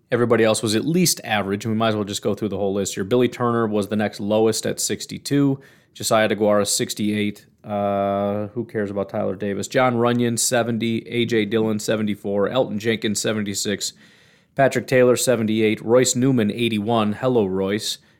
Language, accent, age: English, American, 30-49